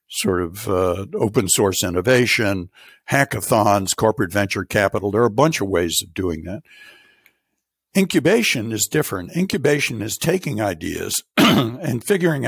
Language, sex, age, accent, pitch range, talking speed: English, male, 60-79, American, 100-140 Hz, 135 wpm